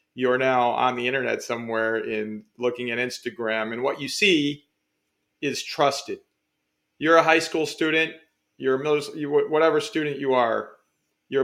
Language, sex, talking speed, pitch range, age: English, male, 150 wpm, 125-150 Hz, 40-59